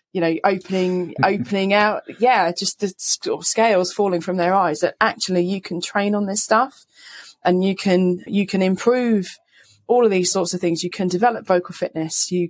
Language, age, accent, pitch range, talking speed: English, 20-39, British, 165-195 Hz, 185 wpm